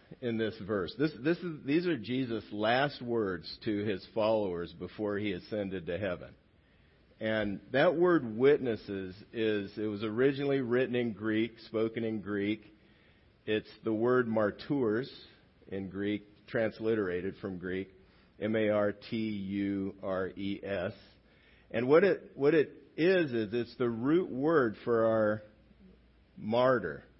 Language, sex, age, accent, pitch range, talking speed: English, male, 50-69, American, 100-125 Hz, 125 wpm